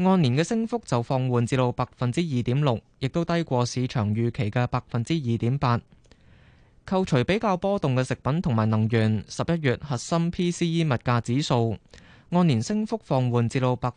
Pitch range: 120-160 Hz